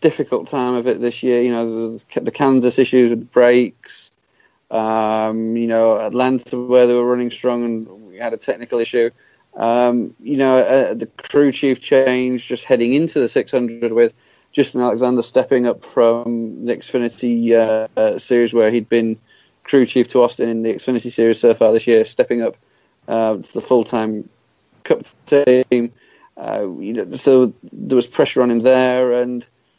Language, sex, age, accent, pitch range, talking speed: English, male, 30-49, British, 120-140 Hz, 175 wpm